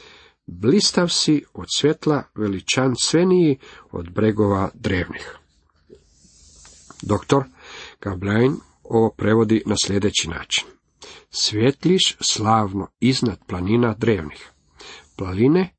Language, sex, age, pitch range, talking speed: Croatian, male, 50-69, 105-145 Hz, 85 wpm